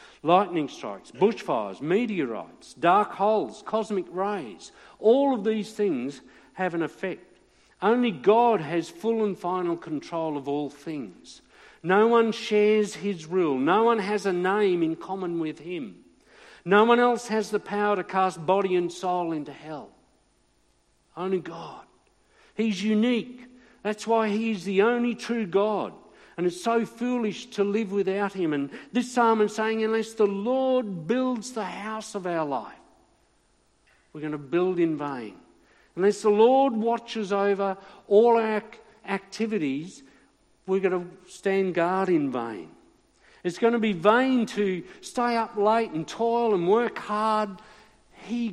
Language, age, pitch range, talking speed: English, 50-69, 180-225 Hz, 150 wpm